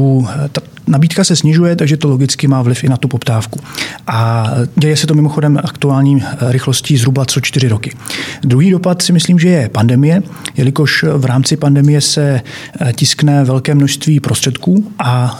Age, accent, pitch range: 40-59, native, 125-150 Hz